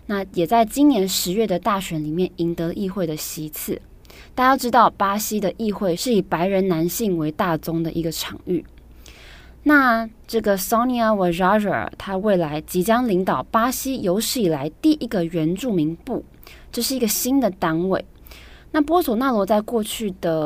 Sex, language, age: female, Chinese, 20-39